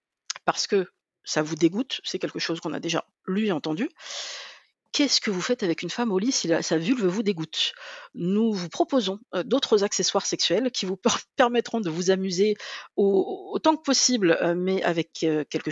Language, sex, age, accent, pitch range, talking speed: French, female, 50-69, French, 175-230 Hz, 180 wpm